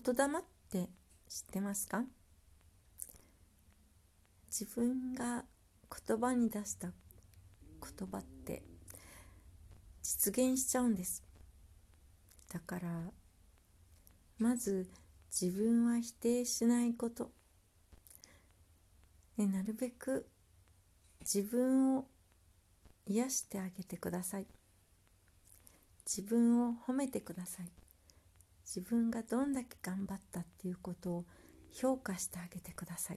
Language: Japanese